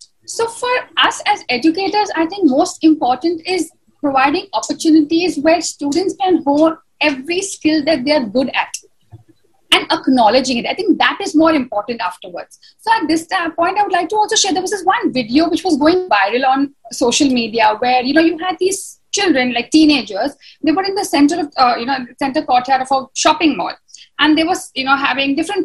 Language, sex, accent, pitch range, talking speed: English, female, Indian, 245-335 Hz, 200 wpm